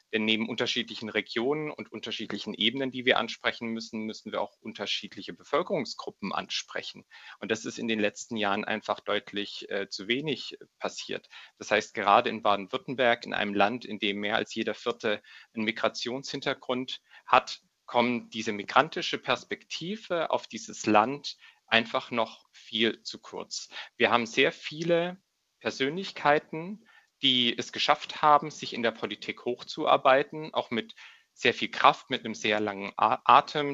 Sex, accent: male, German